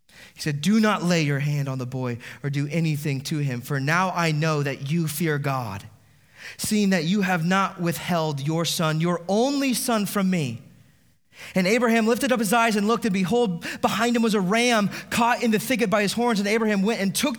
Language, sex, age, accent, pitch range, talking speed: English, male, 30-49, American, 130-185 Hz, 215 wpm